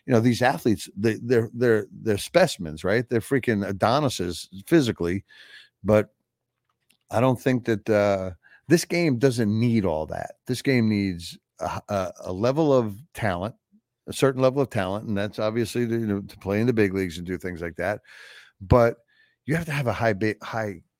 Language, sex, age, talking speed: English, male, 60-79, 185 wpm